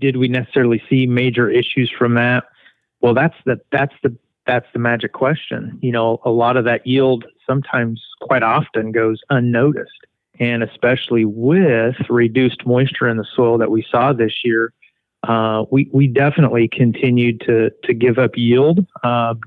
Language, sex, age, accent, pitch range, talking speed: English, male, 40-59, American, 115-135 Hz, 165 wpm